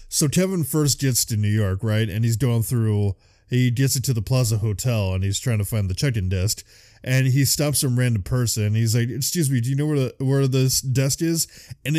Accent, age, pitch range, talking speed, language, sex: American, 20-39, 110-155 Hz, 230 wpm, English, male